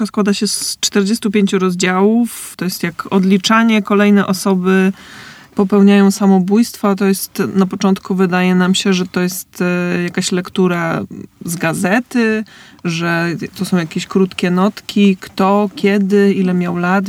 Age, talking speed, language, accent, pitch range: 20-39, 135 wpm, Polish, native, 180-210 Hz